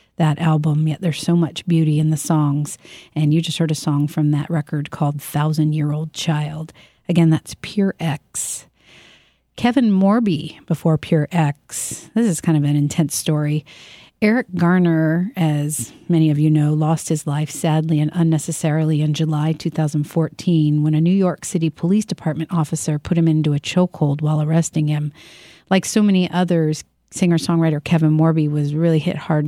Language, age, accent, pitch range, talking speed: English, 40-59, American, 150-170 Hz, 170 wpm